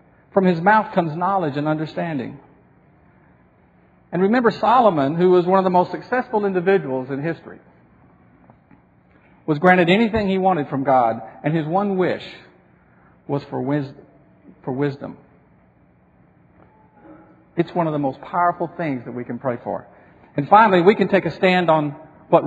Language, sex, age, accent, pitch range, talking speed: English, male, 50-69, American, 140-190 Hz, 150 wpm